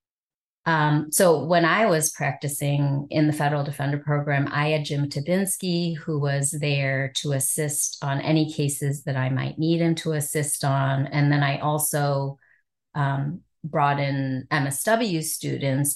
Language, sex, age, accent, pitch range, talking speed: English, female, 30-49, American, 135-155 Hz, 150 wpm